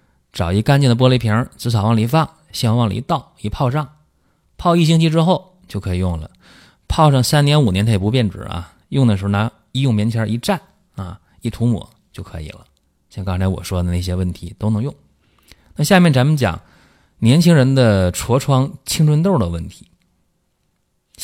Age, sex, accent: 30-49, male, native